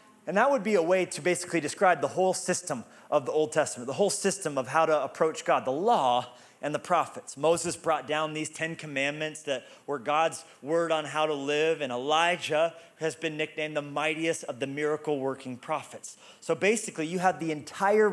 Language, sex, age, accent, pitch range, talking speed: English, male, 30-49, American, 155-200 Hz, 200 wpm